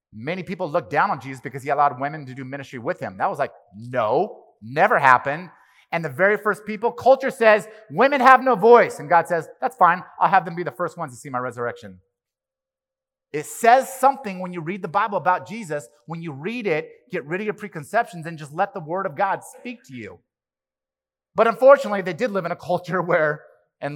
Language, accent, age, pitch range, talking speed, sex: English, American, 30-49, 130-195 Hz, 220 wpm, male